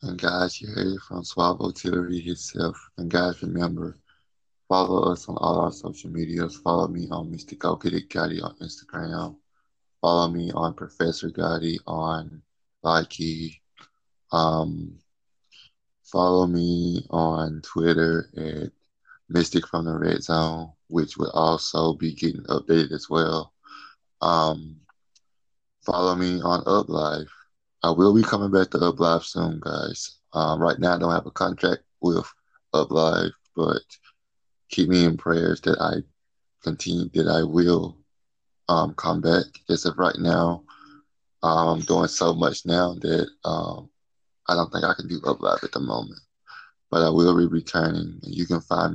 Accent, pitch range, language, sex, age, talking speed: American, 80-90 Hz, English, male, 20-39, 145 wpm